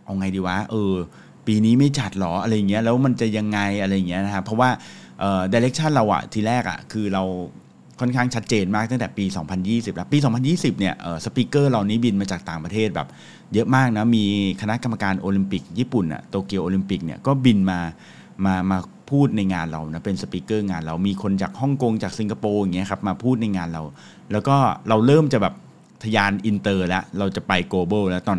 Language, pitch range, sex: English, 95-115 Hz, male